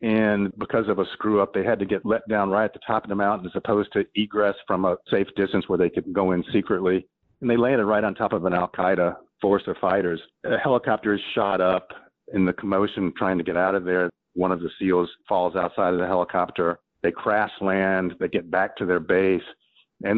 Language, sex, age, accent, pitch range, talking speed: English, male, 50-69, American, 95-115 Hz, 230 wpm